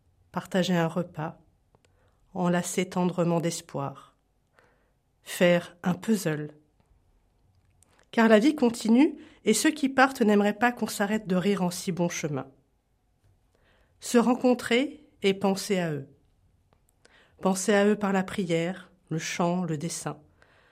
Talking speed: 125 wpm